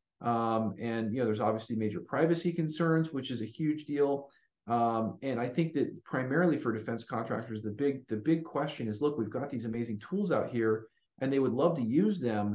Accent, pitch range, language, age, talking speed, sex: American, 110-140 Hz, English, 40-59, 210 wpm, male